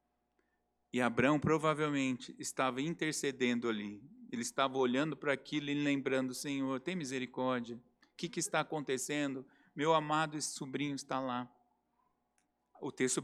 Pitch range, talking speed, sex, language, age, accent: 130-180 Hz, 130 wpm, male, Portuguese, 50-69, Brazilian